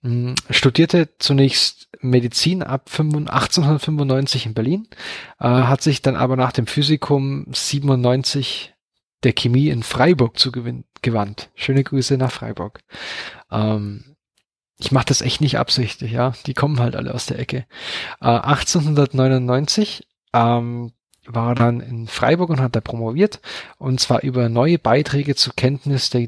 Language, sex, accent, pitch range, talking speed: German, male, German, 120-140 Hz, 140 wpm